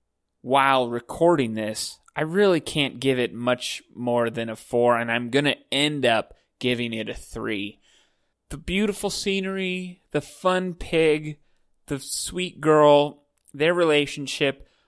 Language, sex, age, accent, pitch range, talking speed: English, male, 30-49, American, 125-180 Hz, 135 wpm